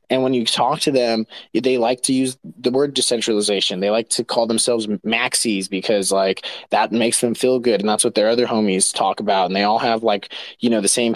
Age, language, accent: 20-39, English, American